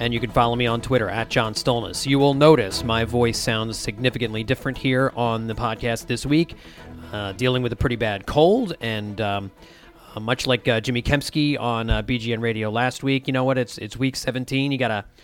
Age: 30-49